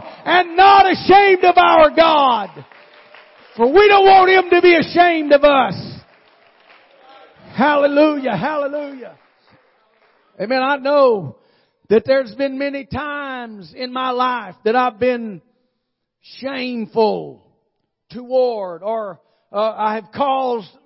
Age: 40-59